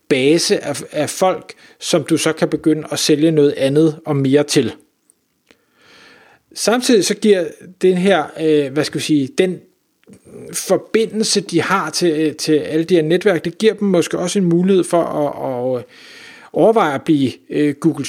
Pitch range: 150-185 Hz